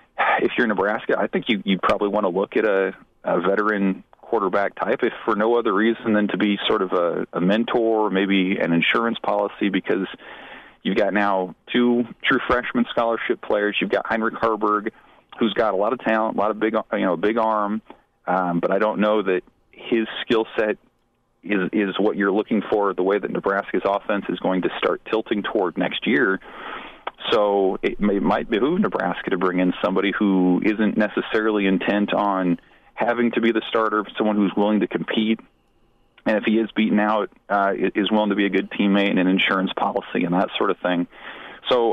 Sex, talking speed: male, 200 wpm